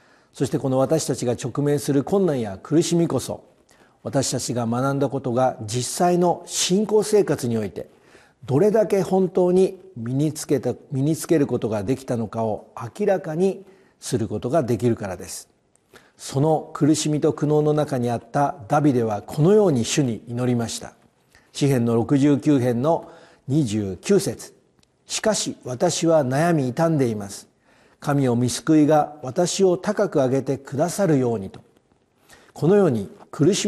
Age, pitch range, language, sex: 50-69, 125-170 Hz, Japanese, male